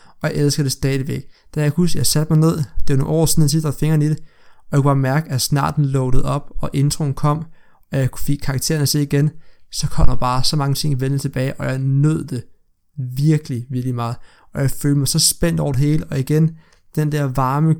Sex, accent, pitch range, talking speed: male, native, 135-155 Hz, 245 wpm